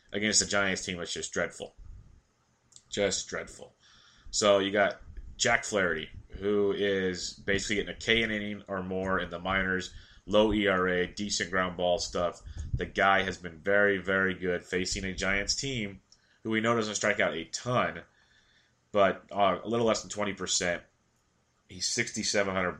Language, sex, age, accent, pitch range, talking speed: English, male, 30-49, American, 95-105 Hz, 160 wpm